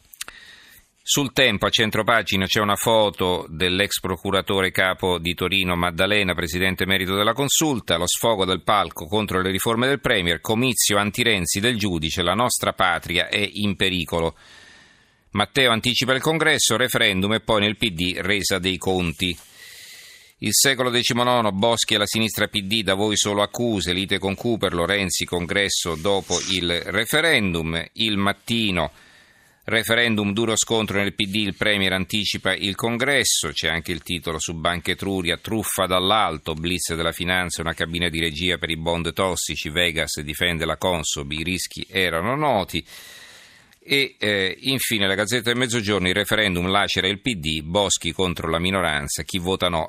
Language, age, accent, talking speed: Italian, 40-59, native, 155 wpm